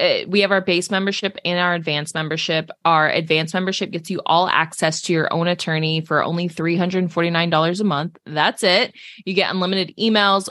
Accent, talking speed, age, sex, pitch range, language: American, 175 wpm, 20-39, female, 155-190 Hz, English